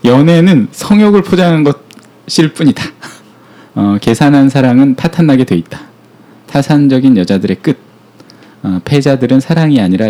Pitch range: 110-150 Hz